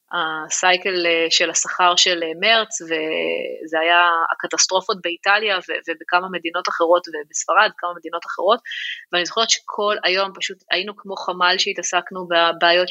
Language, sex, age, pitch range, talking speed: Hebrew, female, 20-39, 175-200 Hz, 125 wpm